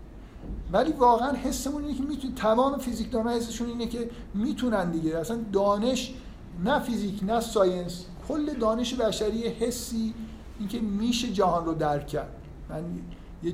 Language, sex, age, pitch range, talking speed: Persian, male, 50-69, 160-210 Hz, 155 wpm